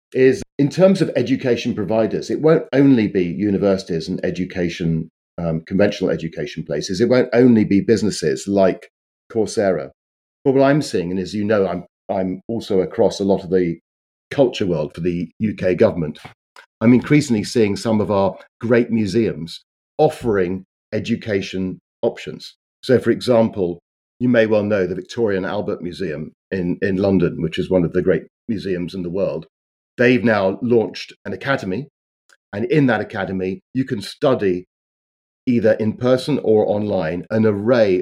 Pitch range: 90-115 Hz